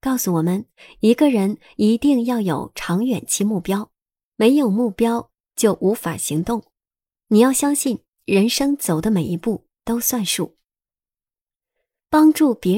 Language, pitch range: Chinese, 185-255 Hz